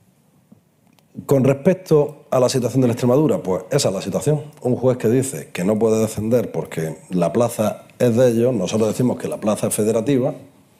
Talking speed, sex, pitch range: 190 wpm, male, 105-135 Hz